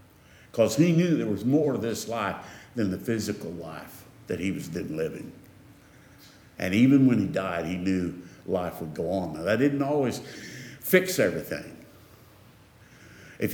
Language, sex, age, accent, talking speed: English, male, 60-79, American, 160 wpm